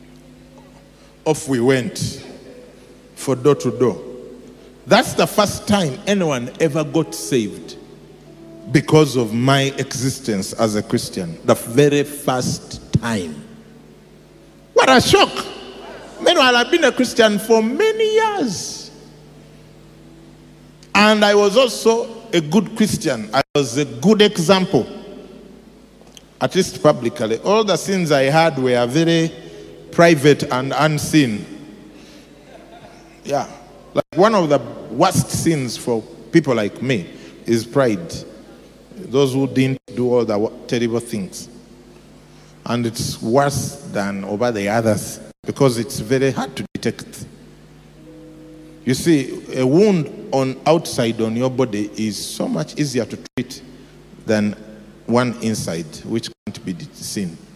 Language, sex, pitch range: English, male, 120-170 Hz